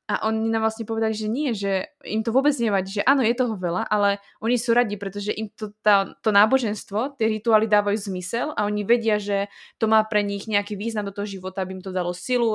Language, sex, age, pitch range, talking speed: Slovak, female, 20-39, 200-225 Hz, 235 wpm